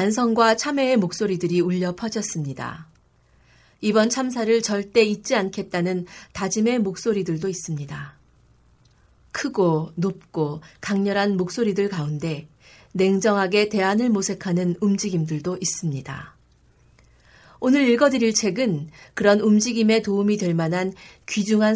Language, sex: Korean, female